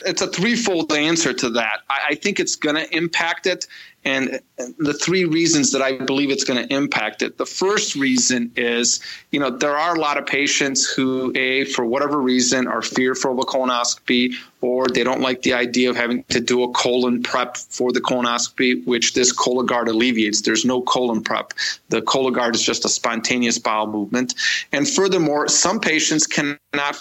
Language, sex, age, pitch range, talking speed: English, male, 30-49, 125-145 Hz, 190 wpm